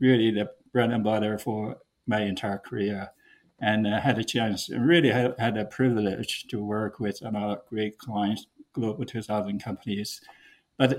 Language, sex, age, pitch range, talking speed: English, male, 50-69, 105-125 Hz, 170 wpm